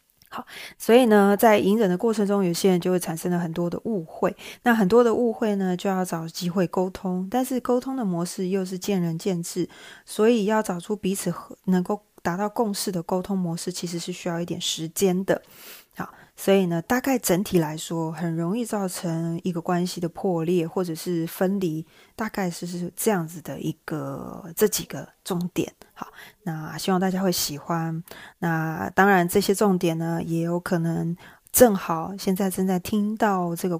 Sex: female